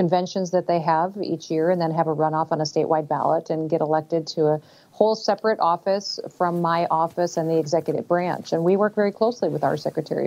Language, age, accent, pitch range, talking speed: English, 40-59, American, 160-185 Hz, 220 wpm